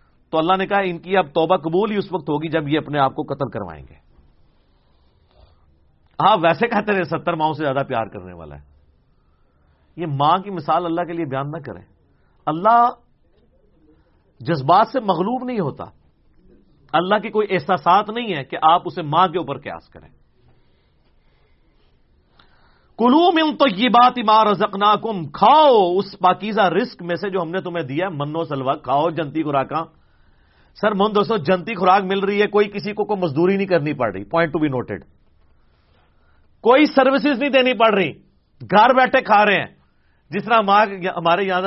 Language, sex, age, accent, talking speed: English, male, 50-69, Indian, 165 wpm